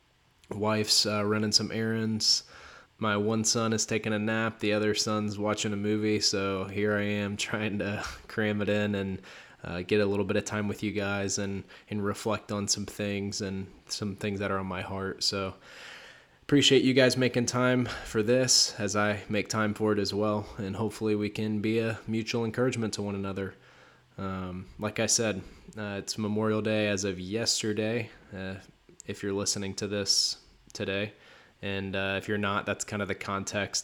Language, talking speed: English, 190 wpm